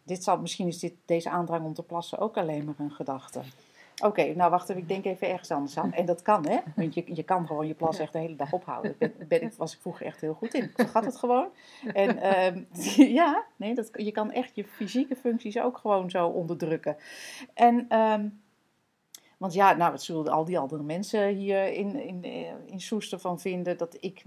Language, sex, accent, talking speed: Dutch, female, Dutch, 225 wpm